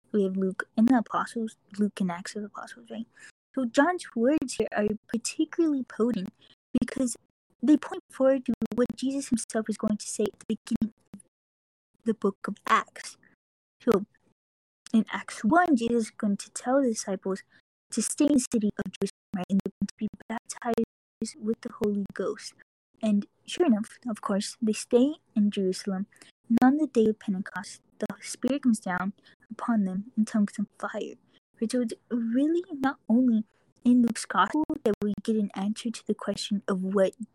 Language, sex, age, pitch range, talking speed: English, female, 20-39, 205-260 Hz, 180 wpm